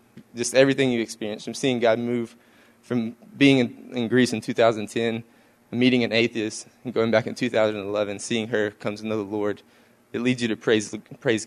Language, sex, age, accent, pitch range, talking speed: English, male, 20-39, American, 110-125 Hz, 190 wpm